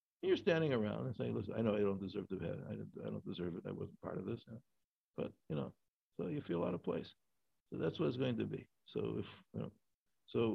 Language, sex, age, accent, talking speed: English, male, 60-79, American, 255 wpm